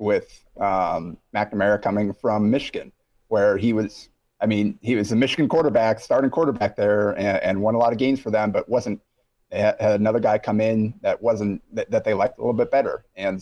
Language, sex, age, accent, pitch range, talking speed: English, male, 30-49, American, 95-115 Hz, 205 wpm